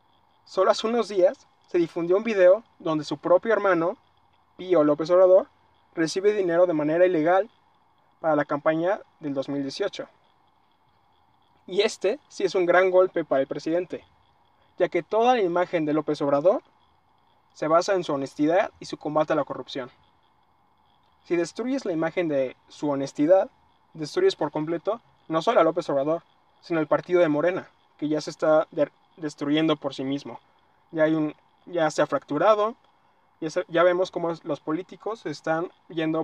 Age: 20-39